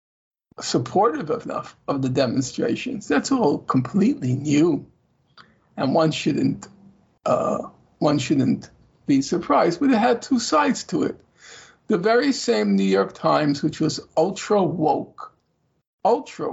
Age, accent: 50-69, American